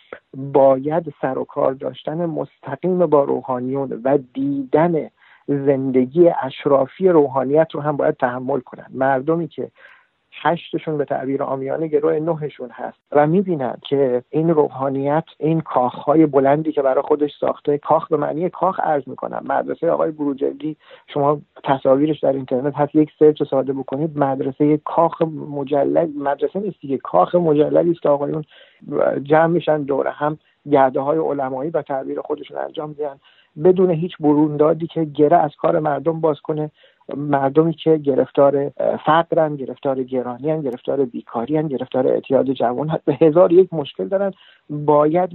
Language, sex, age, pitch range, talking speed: English, male, 50-69, 140-160 Hz, 135 wpm